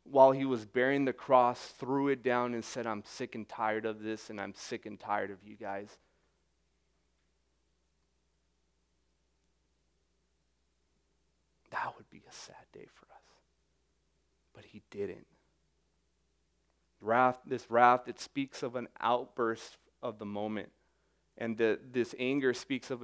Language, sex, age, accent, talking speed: English, male, 30-49, American, 135 wpm